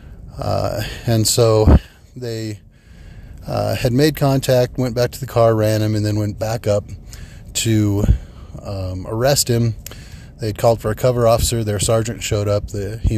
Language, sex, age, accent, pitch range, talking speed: English, male, 30-49, American, 100-115 Hz, 170 wpm